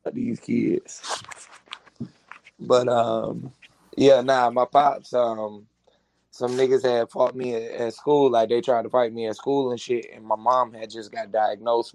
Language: English